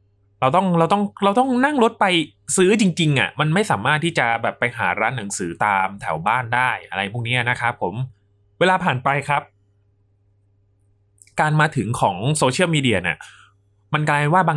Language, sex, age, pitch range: Thai, male, 20-39, 100-150 Hz